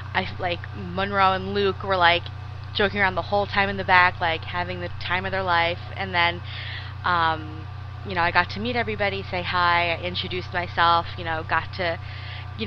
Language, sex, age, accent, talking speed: English, female, 20-39, American, 195 wpm